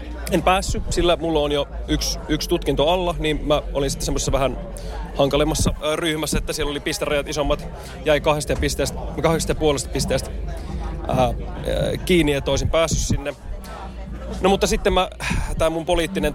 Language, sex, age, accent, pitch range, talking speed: Finnish, male, 30-49, native, 135-160 Hz, 160 wpm